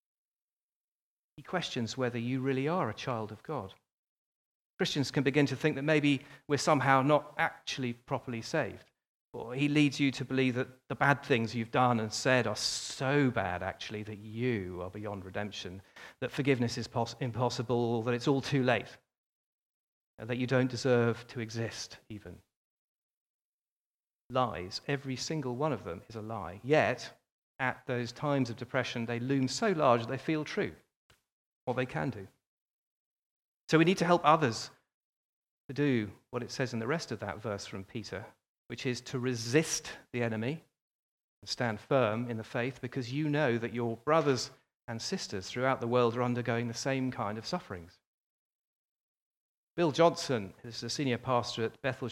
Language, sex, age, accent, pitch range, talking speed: English, male, 40-59, British, 115-140 Hz, 170 wpm